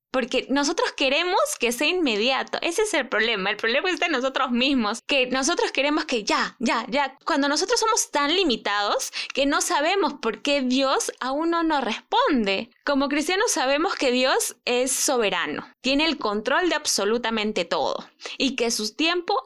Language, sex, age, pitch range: Spanish, female, 10-29, 230-295 Hz